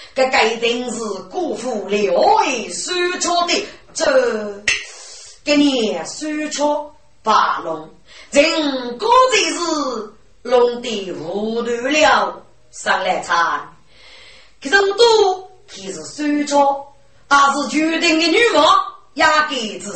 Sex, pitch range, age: female, 225-345 Hz, 30-49